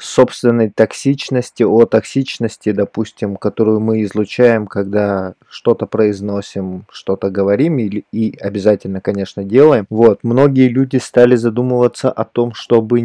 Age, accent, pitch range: 20-39, native, 105-120 Hz